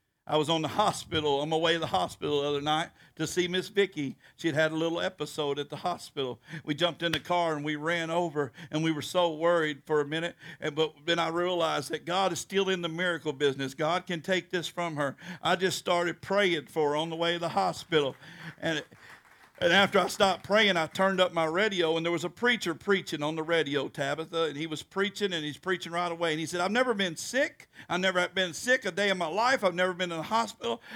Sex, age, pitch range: male, 50-69, 160-210 Hz